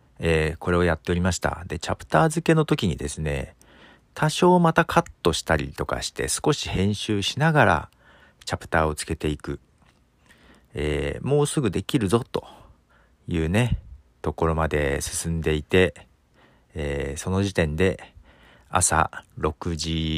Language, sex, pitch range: Japanese, male, 75-120 Hz